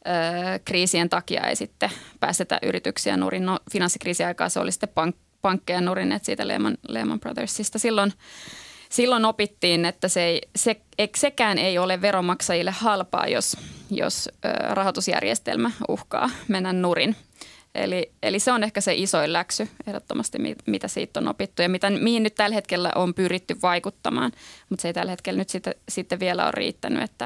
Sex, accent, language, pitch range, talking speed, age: female, native, Finnish, 180-215 Hz, 150 wpm, 20-39